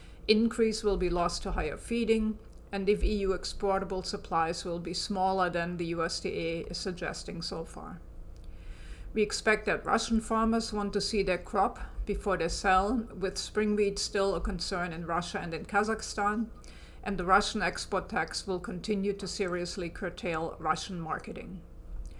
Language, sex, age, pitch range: English, female, 50-69, 170-210 Hz